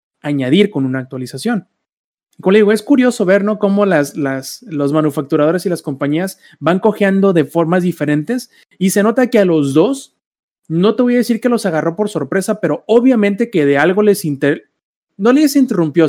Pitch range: 155-205 Hz